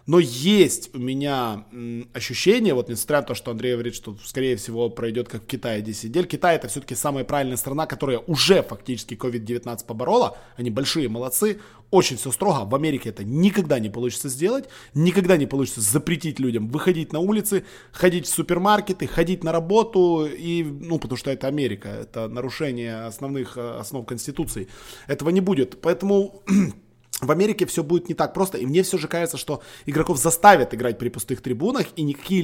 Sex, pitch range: male, 120-165 Hz